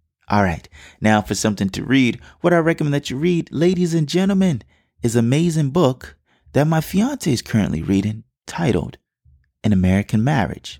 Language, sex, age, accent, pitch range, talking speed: English, male, 30-49, American, 95-130 Hz, 165 wpm